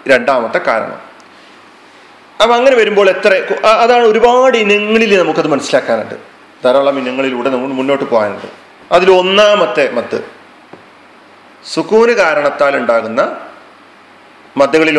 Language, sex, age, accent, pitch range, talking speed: Malayalam, male, 40-59, native, 150-205 Hz, 90 wpm